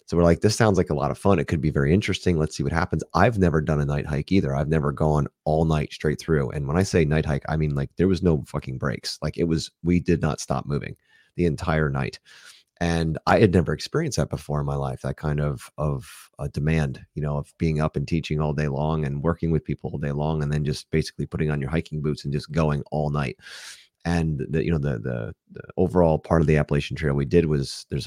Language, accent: English, American